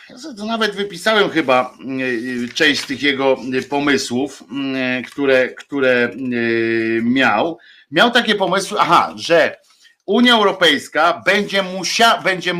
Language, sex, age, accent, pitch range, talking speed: Polish, male, 50-69, native, 115-175 Hz, 105 wpm